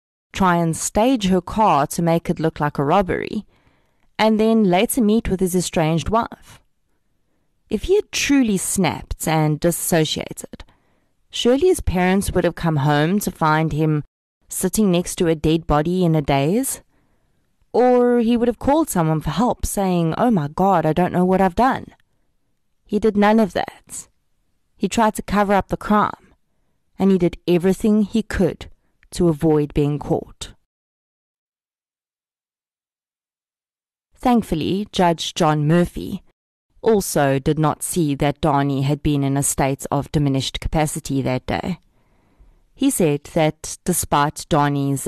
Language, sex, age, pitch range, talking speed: English, female, 30-49, 145-200 Hz, 150 wpm